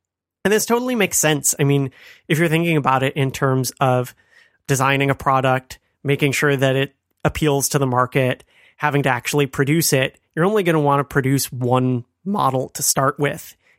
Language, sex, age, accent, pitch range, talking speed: English, male, 30-49, American, 130-150 Hz, 185 wpm